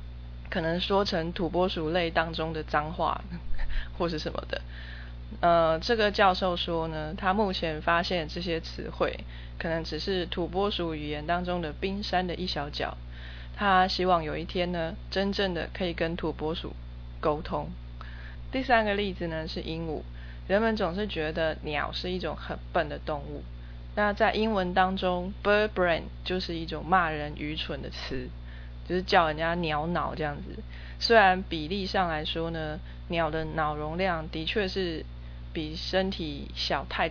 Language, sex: Chinese, female